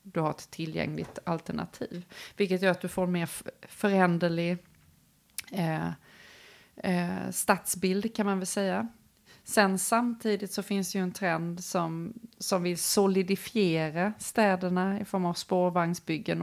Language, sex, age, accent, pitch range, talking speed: Swedish, female, 30-49, native, 165-190 Hz, 135 wpm